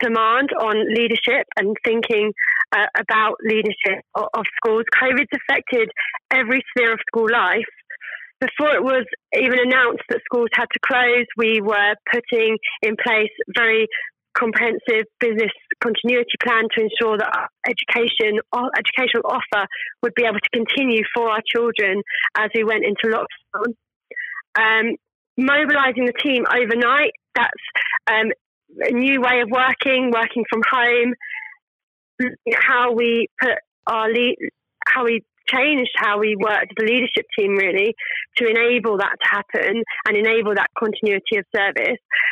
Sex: female